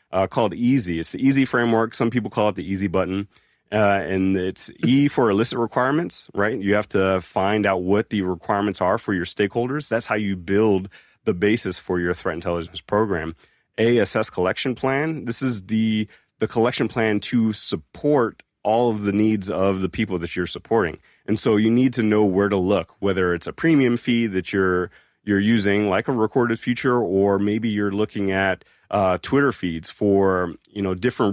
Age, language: 30-49, English